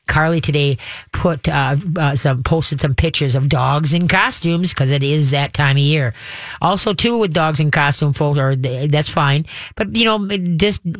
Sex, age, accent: female, 30-49, American